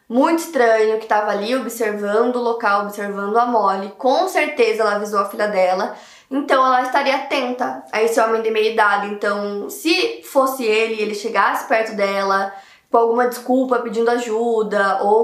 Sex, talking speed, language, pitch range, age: female, 170 wpm, Portuguese, 210-245 Hz, 20-39